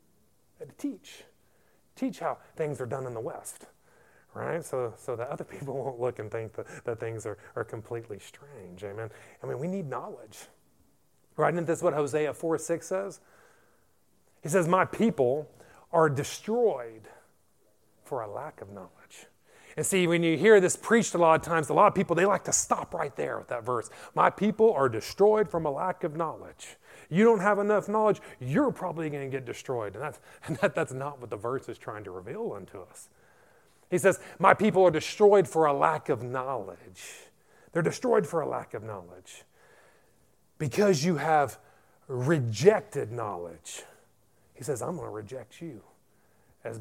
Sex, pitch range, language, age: male, 140-205 Hz, English, 30-49